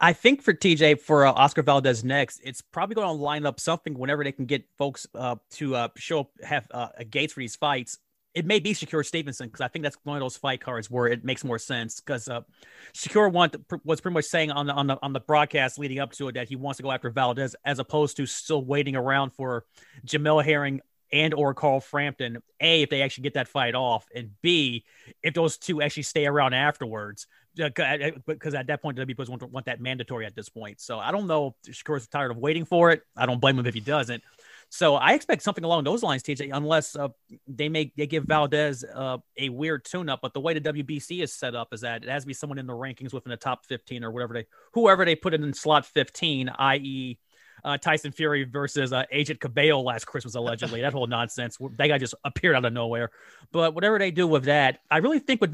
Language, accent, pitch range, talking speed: English, American, 130-155 Hz, 240 wpm